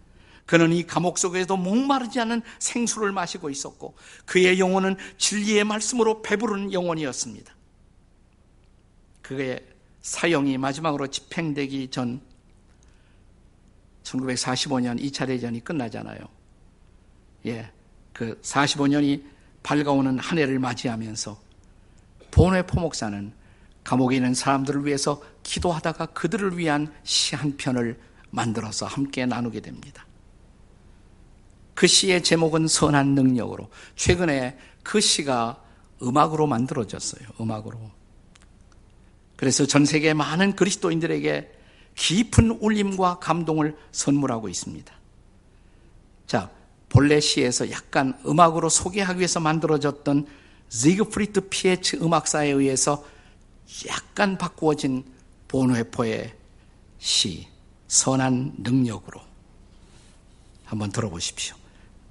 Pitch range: 100-160 Hz